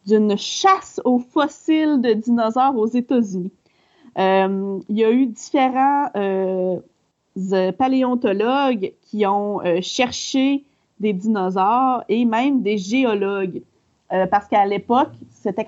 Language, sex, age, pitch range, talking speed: French, female, 30-49, 200-255 Hz, 115 wpm